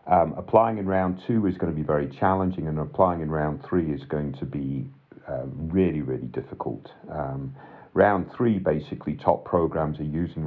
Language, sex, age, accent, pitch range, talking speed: English, male, 50-69, British, 75-100 Hz, 185 wpm